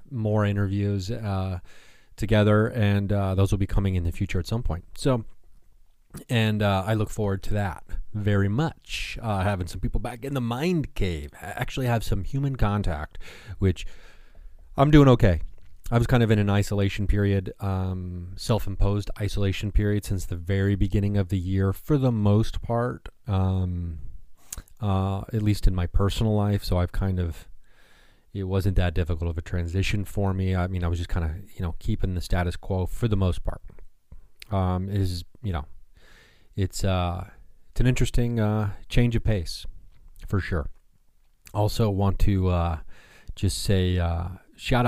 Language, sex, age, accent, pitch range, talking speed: English, male, 30-49, American, 90-105 Hz, 170 wpm